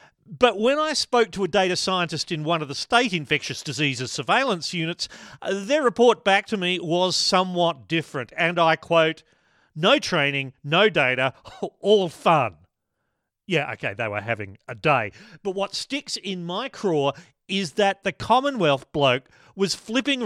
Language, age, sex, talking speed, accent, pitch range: English, 40-59, male, 160 wpm, Australian, 135-195 Hz